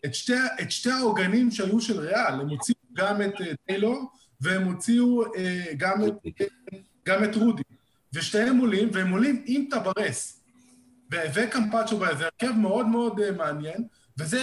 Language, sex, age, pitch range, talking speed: Hebrew, male, 20-39, 190-235 Hz, 140 wpm